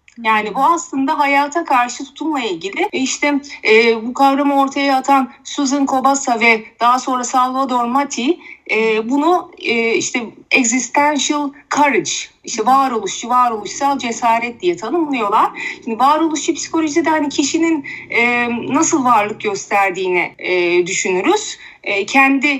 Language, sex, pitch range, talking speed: Turkish, female, 225-300 Hz, 120 wpm